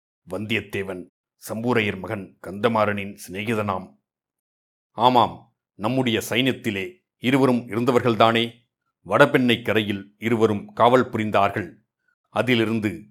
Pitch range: 100-115 Hz